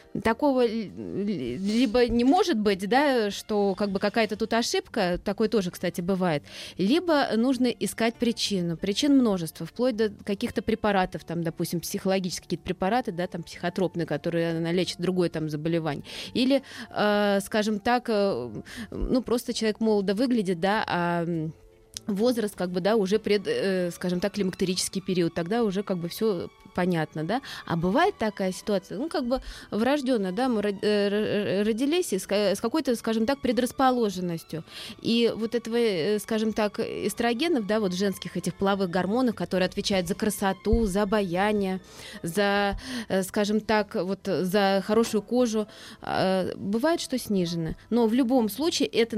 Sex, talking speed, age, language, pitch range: female, 140 wpm, 20-39, Russian, 185-230 Hz